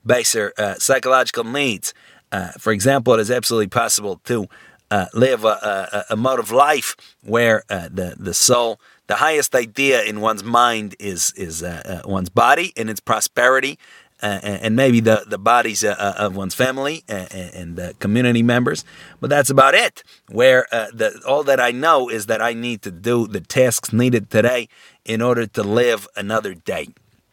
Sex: male